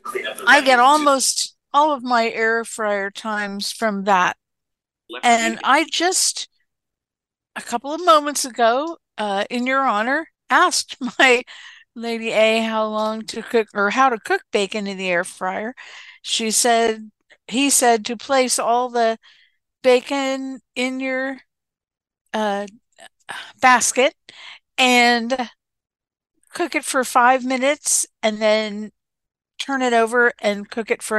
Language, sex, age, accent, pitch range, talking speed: English, female, 60-79, American, 210-270 Hz, 130 wpm